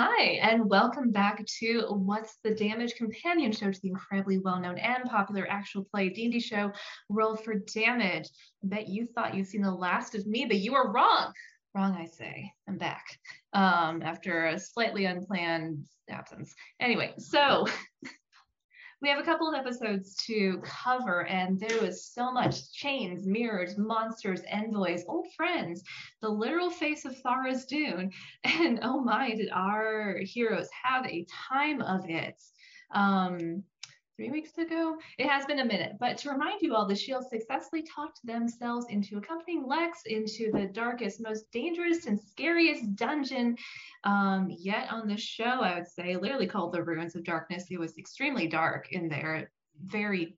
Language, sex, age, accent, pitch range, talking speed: English, female, 20-39, American, 190-260 Hz, 160 wpm